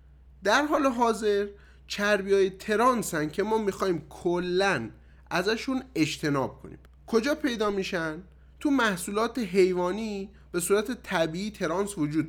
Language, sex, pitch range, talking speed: Persian, male, 170-230 Hz, 115 wpm